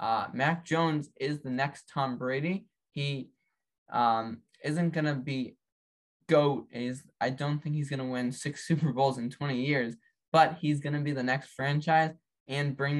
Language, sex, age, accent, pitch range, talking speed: English, male, 10-29, American, 130-155 Hz, 180 wpm